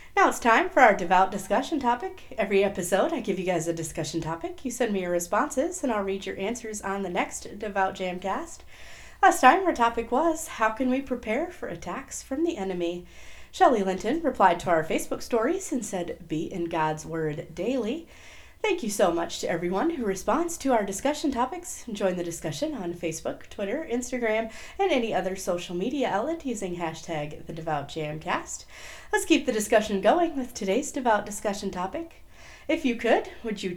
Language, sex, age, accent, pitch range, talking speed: English, female, 30-49, American, 180-280 Hz, 185 wpm